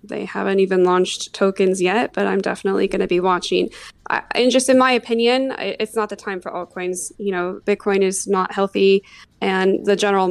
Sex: female